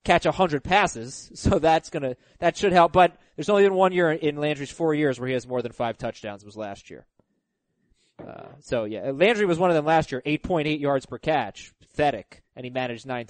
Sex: male